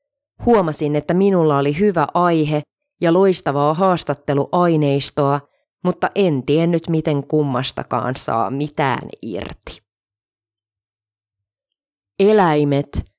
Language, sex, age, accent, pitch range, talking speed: Finnish, female, 30-49, native, 140-195 Hz, 80 wpm